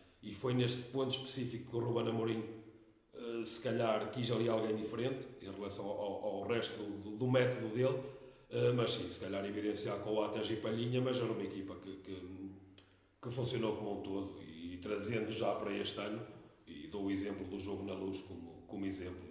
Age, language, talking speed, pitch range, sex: 40-59, Portuguese, 210 wpm, 100-125 Hz, male